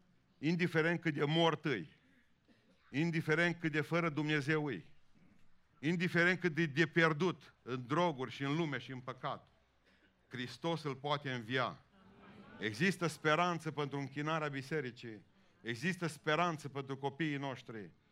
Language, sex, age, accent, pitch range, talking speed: Romanian, male, 50-69, native, 115-160 Hz, 115 wpm